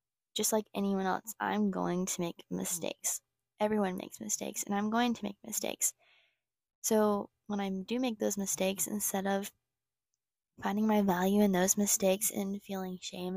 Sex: female